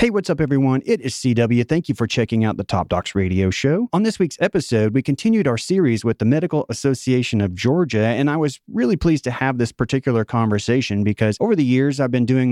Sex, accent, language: male, American, English